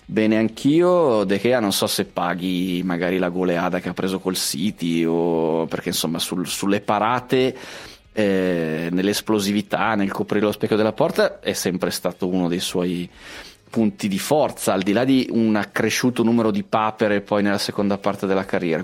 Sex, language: male, Italian